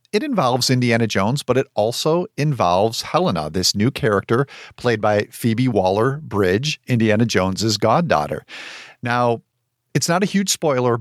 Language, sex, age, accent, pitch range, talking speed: English, male, 40-59, American, 105-130 Hz, 135 wpm